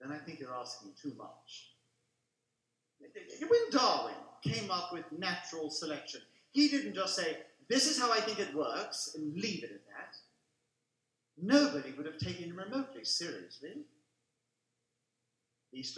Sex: male